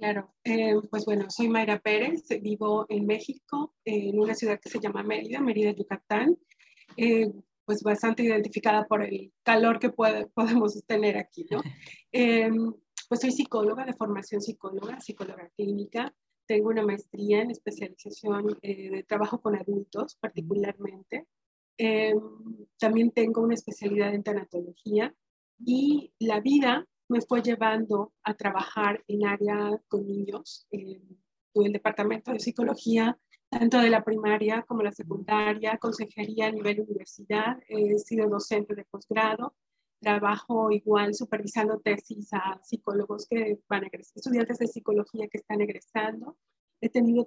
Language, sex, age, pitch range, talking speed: Spanish, female, 30-49, 205-230 Hz, 140 wpm